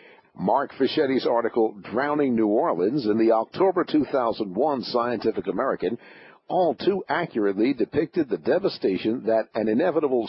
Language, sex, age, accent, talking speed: English, male, 50-69, American, 120 wpm